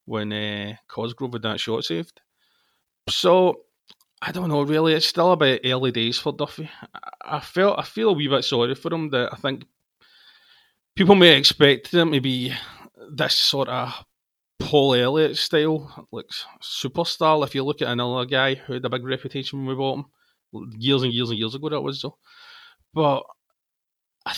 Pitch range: 120-150 Hz